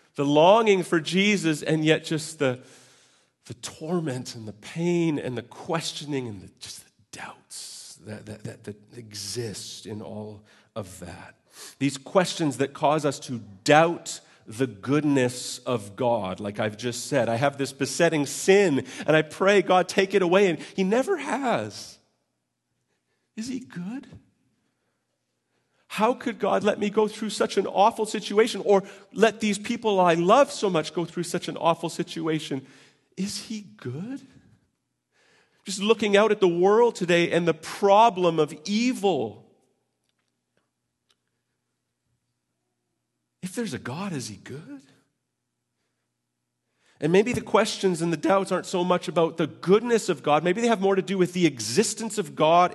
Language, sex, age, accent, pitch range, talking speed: English, male, 40-59, American, 125-200 Hz, 155 wpm